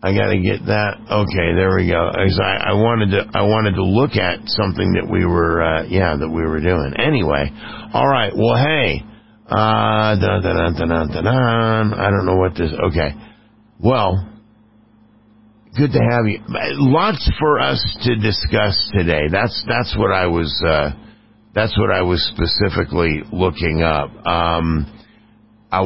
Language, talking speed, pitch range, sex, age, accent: English, 150 wpm, 90-110 Hz, male, 50-69, American